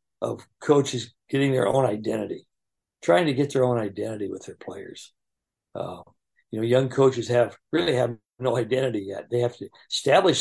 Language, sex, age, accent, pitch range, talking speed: English, male, 60-79, American, 115-130 Hz, 175 wpm